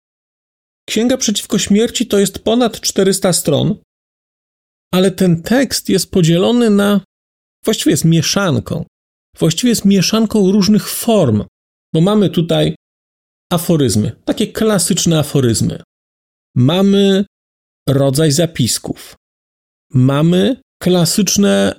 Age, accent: 40-59, native